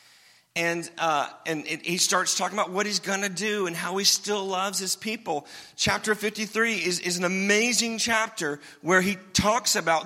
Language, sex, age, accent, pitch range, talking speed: English, male, 40-59, American, 160-215 Hz, 185 wpm